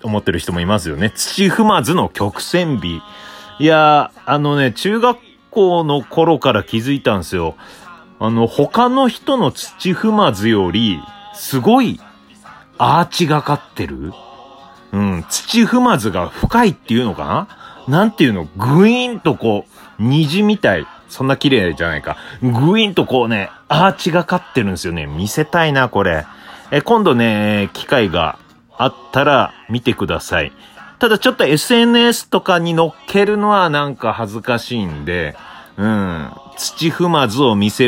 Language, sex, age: Japanese, male, 30-49